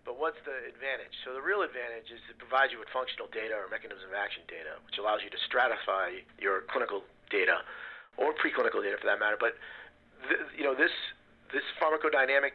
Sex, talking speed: male, 190 wpm